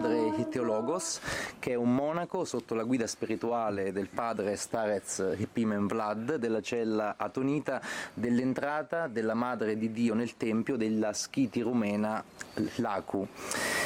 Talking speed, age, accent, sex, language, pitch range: 120 wpm, 30-49, Italian, male, Romanian, 110-130 Hz